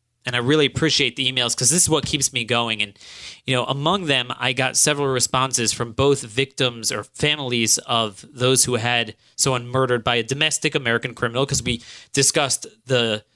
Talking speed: 190 wpm